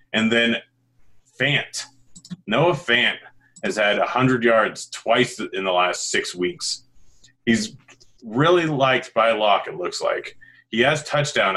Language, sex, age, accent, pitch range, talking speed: English, male, 30-49, American, 100-130 Hz, 135 wpm